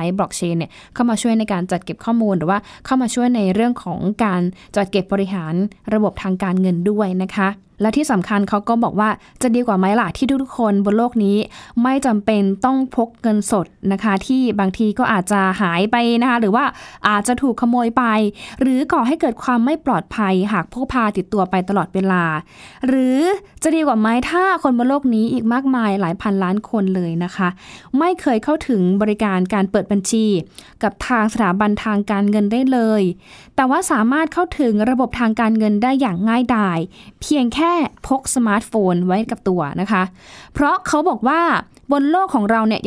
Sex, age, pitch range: female, 20-39, 200-255 Hz